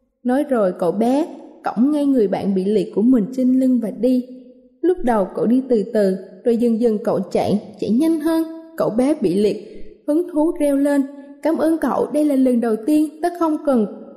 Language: Vietnamese